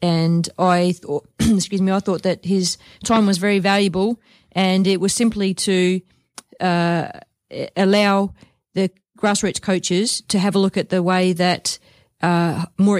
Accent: Australian